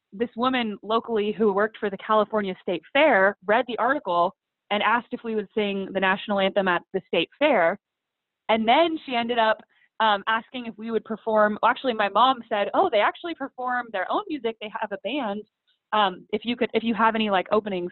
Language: English